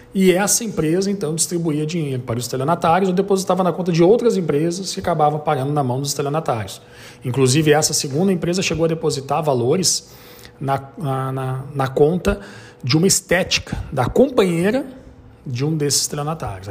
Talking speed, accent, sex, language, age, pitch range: 155 wpm, Brazilian, male, Portuguese, 40-59, 125-165 Hz